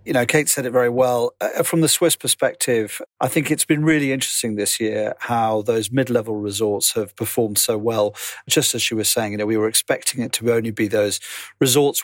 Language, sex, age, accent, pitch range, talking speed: English, male, 40-59, British, 115-140 Hz, 220 wpm